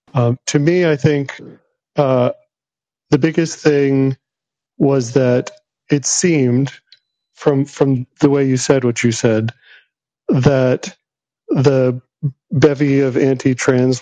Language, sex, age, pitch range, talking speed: English, male, 40-59, 125-150 Hz, 115 wpm